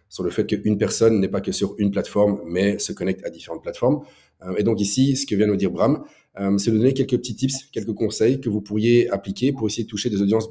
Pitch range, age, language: 95-115 Hz, 30-49, French